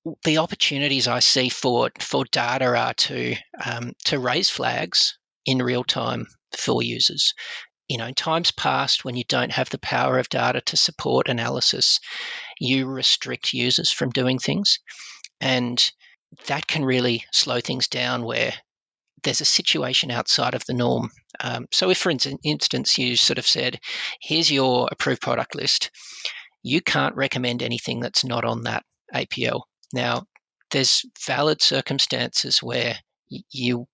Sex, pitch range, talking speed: male, 125-155 Hz, 150 wpm